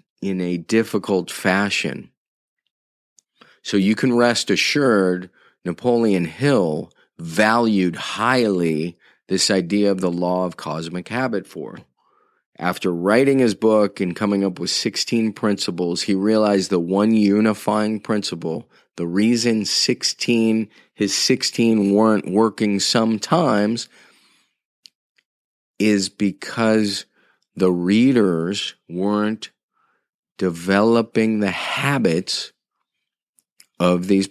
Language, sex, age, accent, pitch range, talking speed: English, male, 30-49, American, 90-110 Hz, 100 wpm